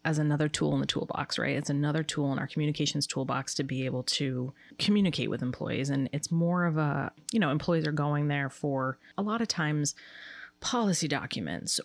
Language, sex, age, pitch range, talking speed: English, female, 30-49, 140-160 Hz, 200 wpm